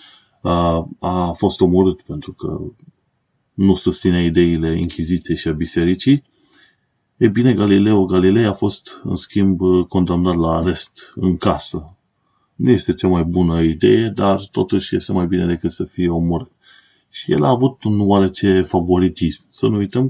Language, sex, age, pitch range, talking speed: Romanian, male, 30-49, 85-100 Hz, 150 wpm